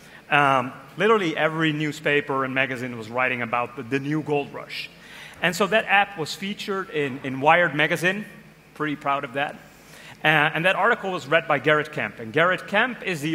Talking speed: 190 wpm